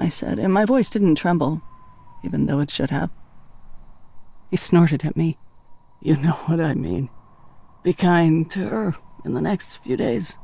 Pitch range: 140-180 Hz